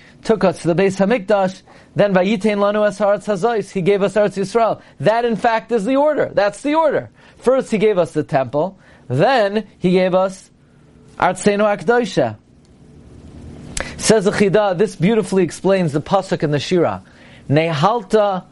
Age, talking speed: 30-49, 145 wpm